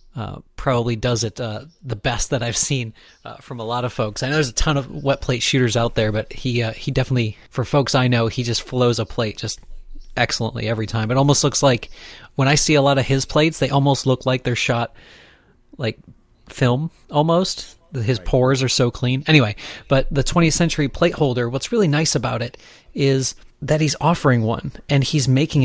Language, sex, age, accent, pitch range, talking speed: English, male, 30-49, American, 125-150 Hz, 215 wpm